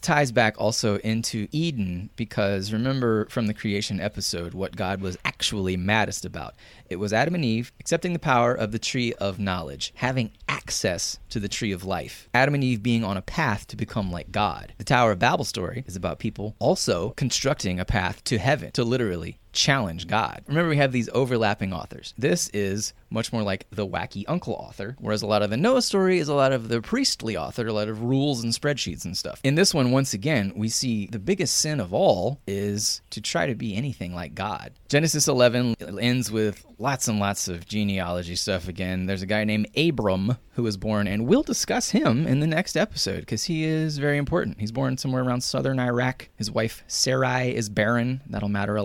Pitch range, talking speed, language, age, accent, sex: 100-130 Hz, 210 wpm, English, 30-49, American, male